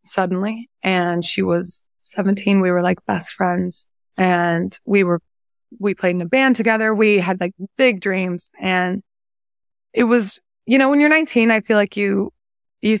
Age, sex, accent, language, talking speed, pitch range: 20-39, female, American, English, 170 wpm, 175-210 Hz